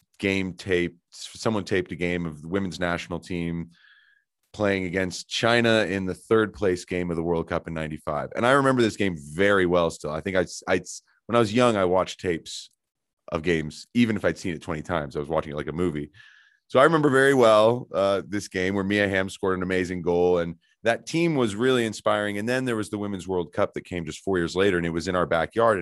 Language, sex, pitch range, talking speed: English, male, 85-110 Hz, 235 wpm